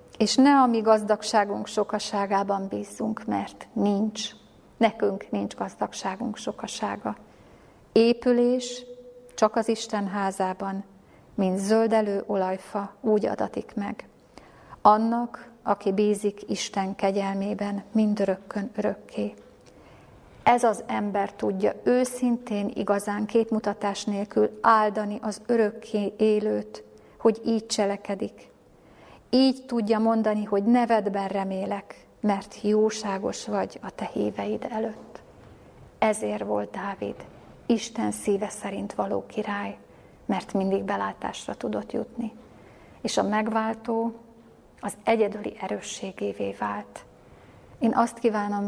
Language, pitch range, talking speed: Hungarian, 200-225 Hz, 105 wpm